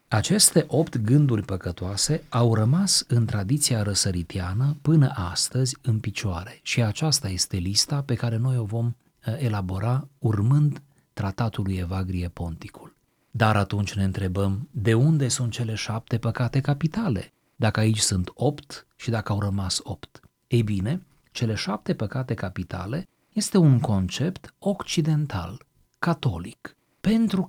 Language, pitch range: Romanian, 100-135 Hz